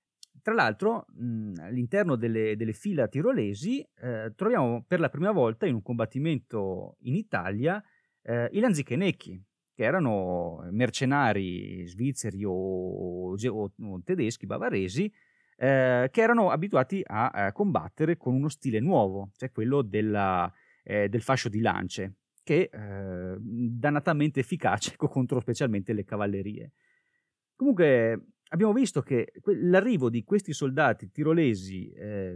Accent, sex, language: native, male, Italian